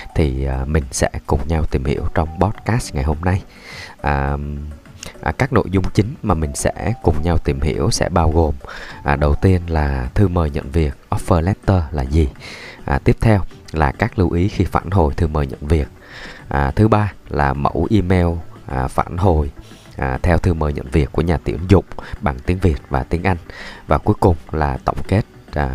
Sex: male